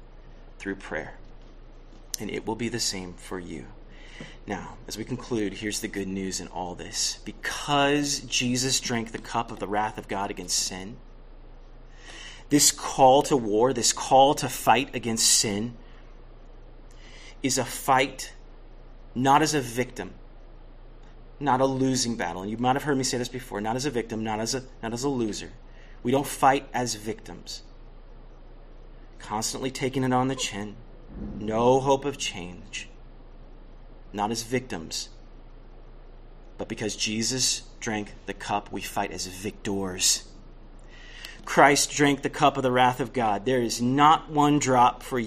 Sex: male